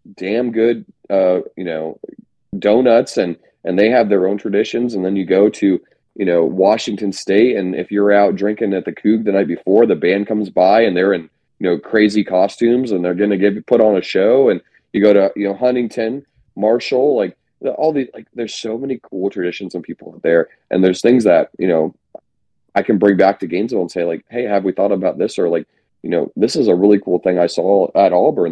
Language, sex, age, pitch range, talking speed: English, male, 30-49, 90-115 Hz, 225 wpm